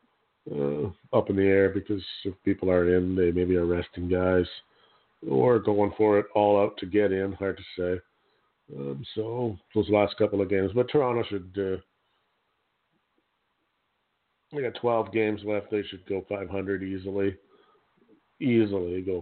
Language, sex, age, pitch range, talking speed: English, male, 50-69, 100-120 Hz, 155 wpm